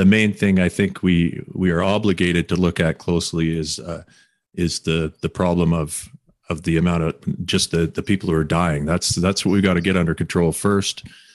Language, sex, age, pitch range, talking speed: English, male, 40-59, 85-100 Hz, 215 wpm